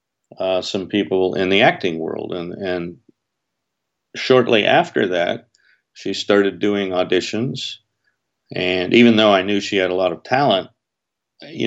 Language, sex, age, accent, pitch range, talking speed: English, male, 50-69, American, 85-100 Hz, 145 wpm